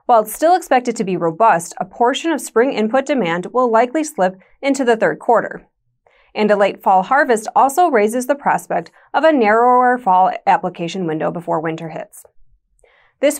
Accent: American